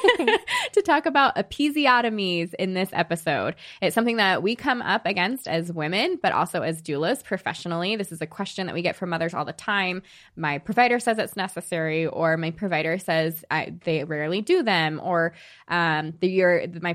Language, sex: English, female